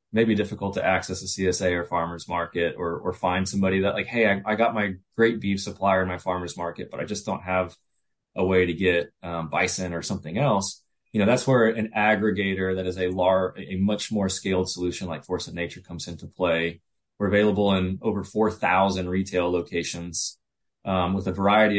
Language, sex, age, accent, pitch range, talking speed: English, male, 20-39, American, 90-105 Hz, 205 wpm